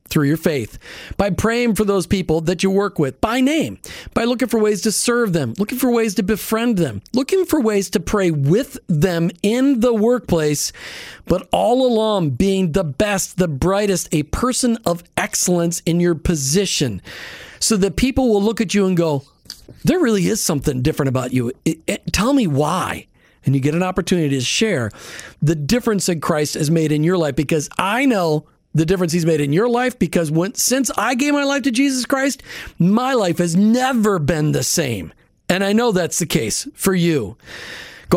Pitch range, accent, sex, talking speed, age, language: 155-220 Hz, American, male, 195 wpm, 40-59, English